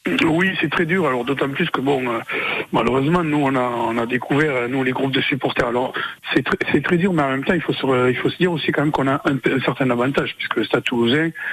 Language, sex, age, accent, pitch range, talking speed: French, male, 60-79, French, 120-145 Hz, 265 wpm